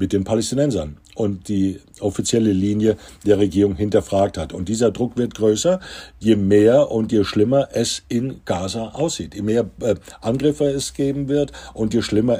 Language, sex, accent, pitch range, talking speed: German, male, German, 95-130 Hz, 165 wpm